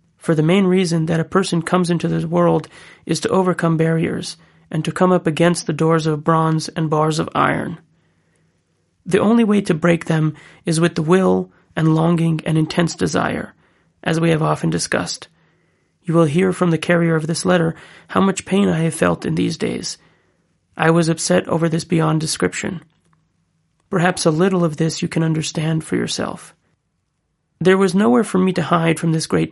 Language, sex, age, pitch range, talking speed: English, male, 30-49, 160-175 Hz, 190 wpm